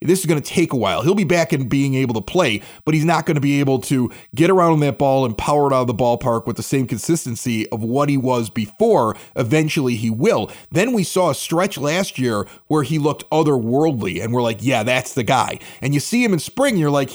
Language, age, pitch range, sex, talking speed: English, 30-49, 120-170 Hz, male, 255 wpm